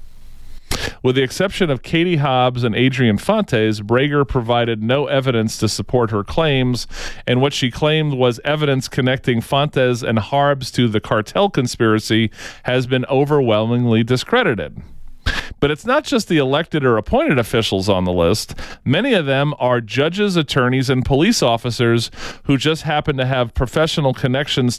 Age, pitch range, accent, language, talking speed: 40-59, 120-150 Hz, American, English, 150 wpm